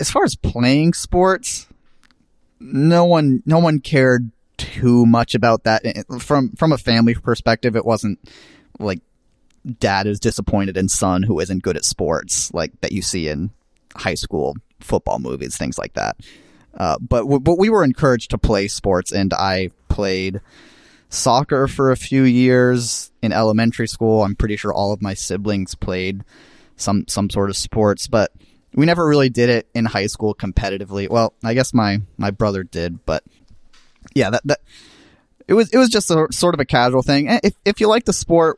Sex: male